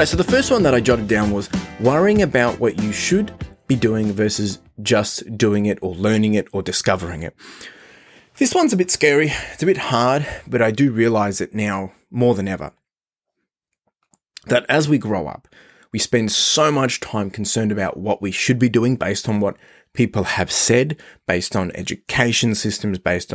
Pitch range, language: 105-135 Hz, English